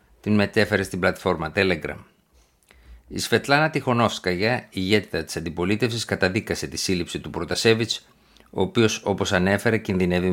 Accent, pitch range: native, 90-110 Hz